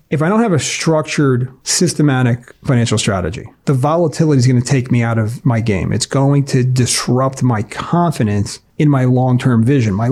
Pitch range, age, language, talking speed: 125-155 Hz, 40-59, English, 185 wpm